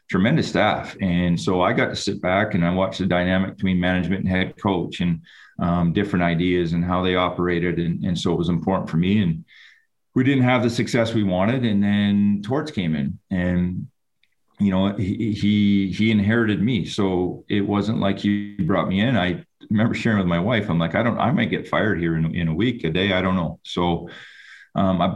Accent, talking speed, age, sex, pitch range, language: American, 215 wpm, 40-59, male, 85-100 Hz, English